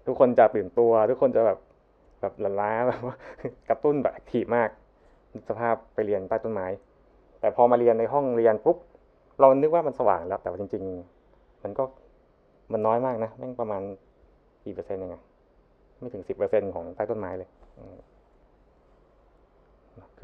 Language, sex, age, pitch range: Thai, male, 20-39, 105-135 Hz